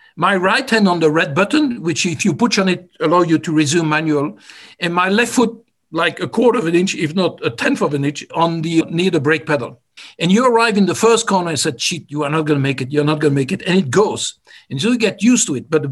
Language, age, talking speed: English, 60-79, 285 wpm